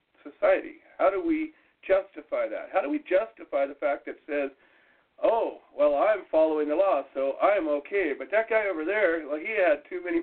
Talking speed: 195 wpm